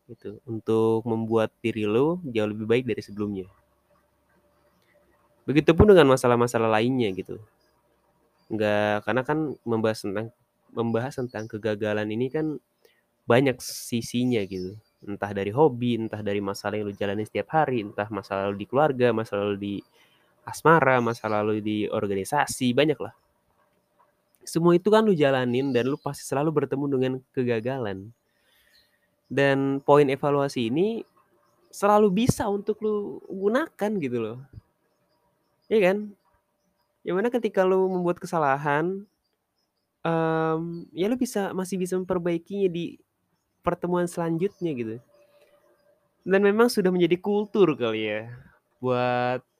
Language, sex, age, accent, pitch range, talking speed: Indonesian, male, 20-39, native, 110-170 Hz, 125 wpm